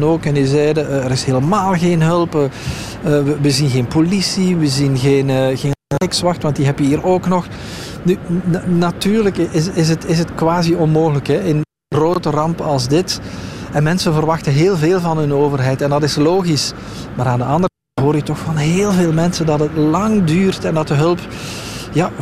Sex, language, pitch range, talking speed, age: male, Dutch, 145-180 Hz, 205 wpm, 40-59